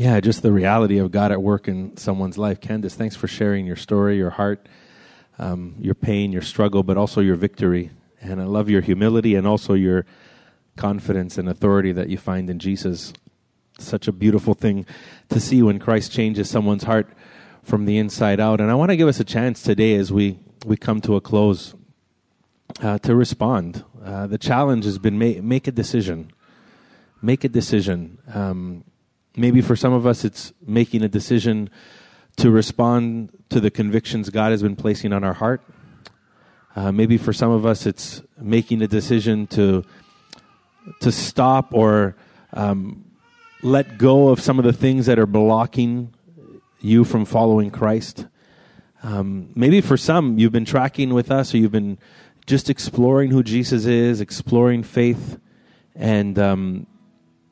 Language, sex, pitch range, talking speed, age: English, male, 100-120 Hz, 170 wpm, 30-49